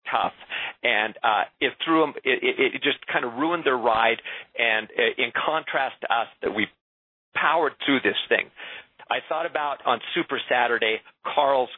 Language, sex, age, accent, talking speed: English, male, 50-69, American, 150 wpm